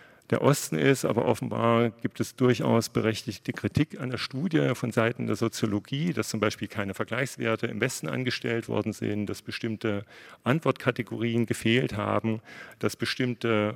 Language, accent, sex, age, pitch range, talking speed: German, German, male, 40-59, 110-130 Hz, 150 wpm